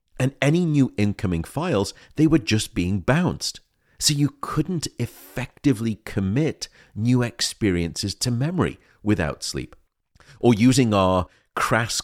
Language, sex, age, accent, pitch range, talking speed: English, male, 40-59, British, 90-130 Hz, 125 wpm